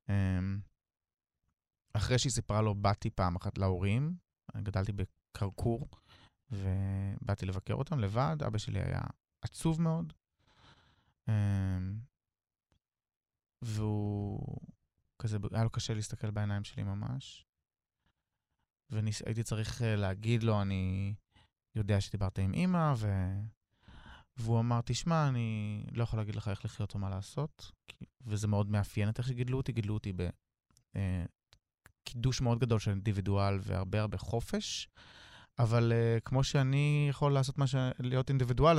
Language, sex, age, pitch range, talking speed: Hebrew, male, 20-39, 100-125 Hz, 120 wpm